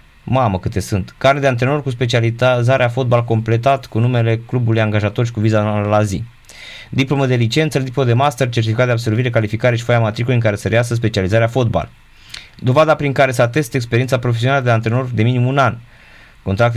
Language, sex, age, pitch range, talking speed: Romanian, male, 20-39, 110-135 Hz, 185 wpm